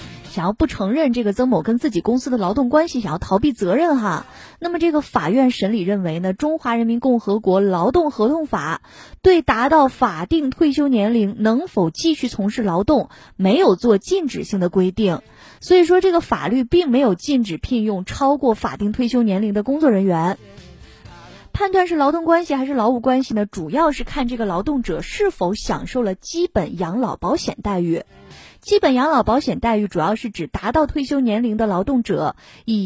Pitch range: 200-290 Hz